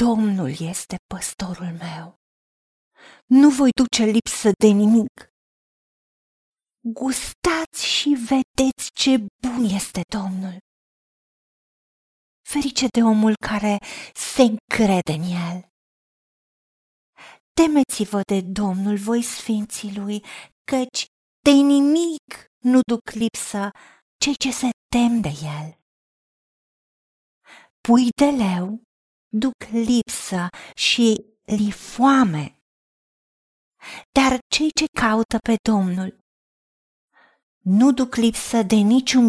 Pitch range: 205-265 Hz